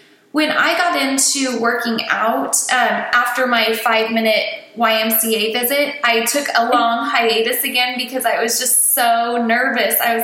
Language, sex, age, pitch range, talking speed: English, female, 20-39, 225-260 Hz, 160 wpm